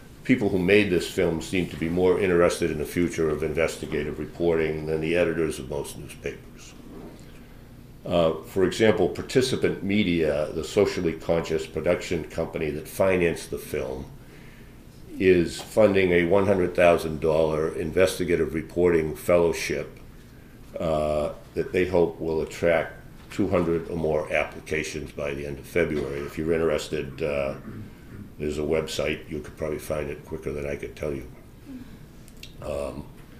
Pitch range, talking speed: 80-95 Hz, 140 wpm